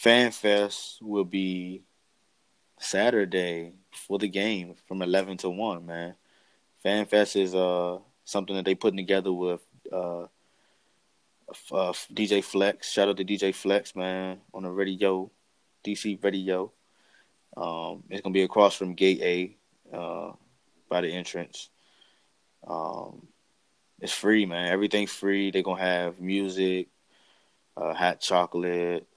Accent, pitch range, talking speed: American, 90-100 Hz, 135 wpm